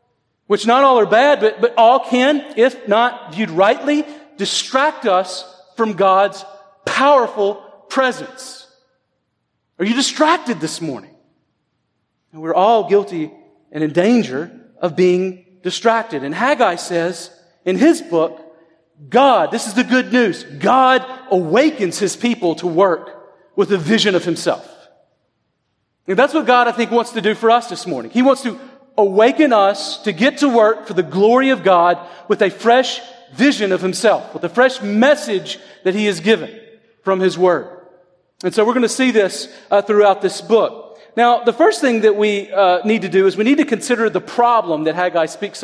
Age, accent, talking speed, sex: 40-59, American, 170 wpm, male